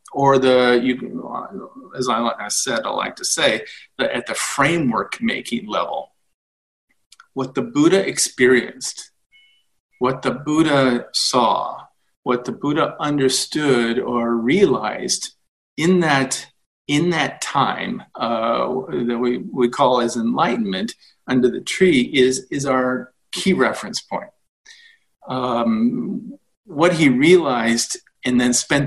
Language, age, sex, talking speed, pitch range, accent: English, 40-59, male, 120 wpm, 125-175 Hz, American